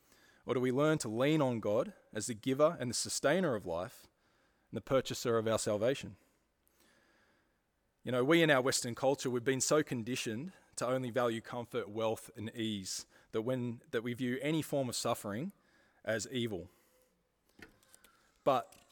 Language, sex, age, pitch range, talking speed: English, male, 20-39, 115-150 Hz, 160 wpm